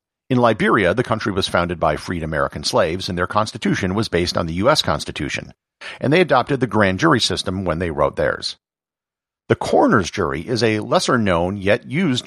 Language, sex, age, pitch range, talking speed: English, male, 50-69, 95-125 Hz, 185 wpm